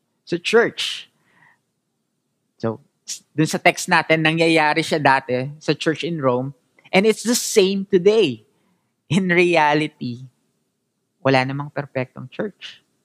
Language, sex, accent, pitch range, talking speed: English, male, Filipino, 135-185 Hz, 115 wpm